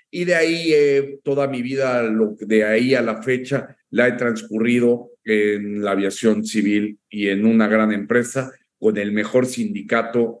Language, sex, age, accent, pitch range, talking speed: Spanish, male, 50-69, Mexican, 115-140 Hz, 160 wpm